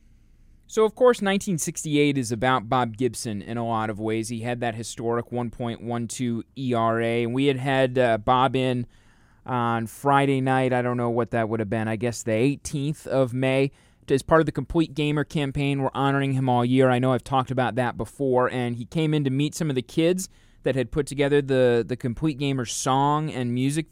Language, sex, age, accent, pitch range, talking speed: English, male, 20-39, American, 120-140 Hz, 205 wpm